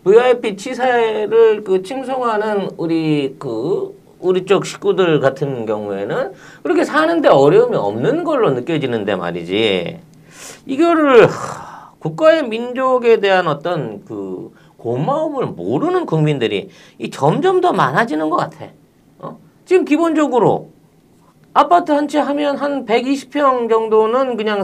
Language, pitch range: Korean, 195-300 Hz